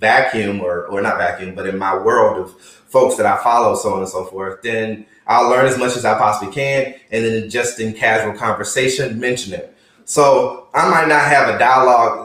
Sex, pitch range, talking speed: male, 110-140 Hz, 210 wpm